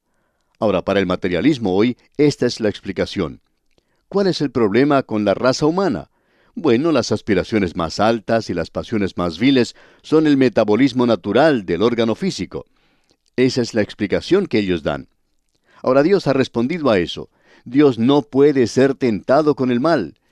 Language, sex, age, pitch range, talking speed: Spanish, male, 60-79, 105-140 Hz, 160 wpm